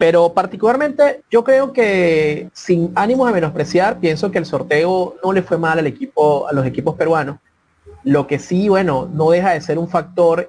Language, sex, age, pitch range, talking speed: Spanish, male, 30-49, 145-175 Hz, 190 wpm